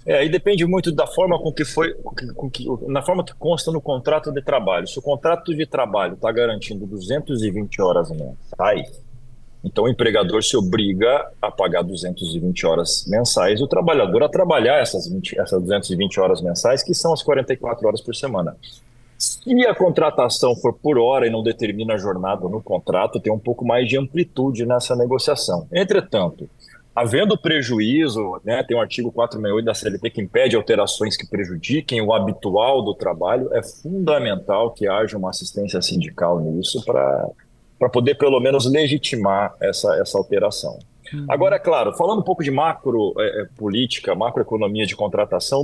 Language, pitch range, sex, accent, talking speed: Portuguese, 115-150 Hz, male, Brazilian, 170 wpm